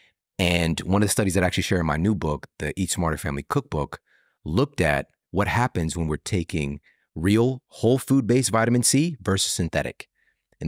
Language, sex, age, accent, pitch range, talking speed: English, male, 30-49, American, 80-110 Hz, 185 wpm